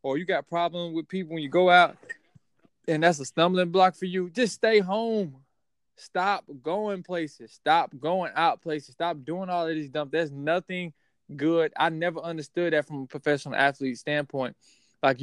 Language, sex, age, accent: English, male, 20-39, American